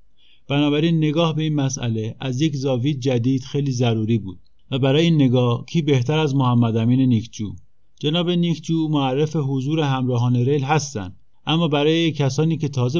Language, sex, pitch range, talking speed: Persian, male, 120-145 Hz, 150 wpm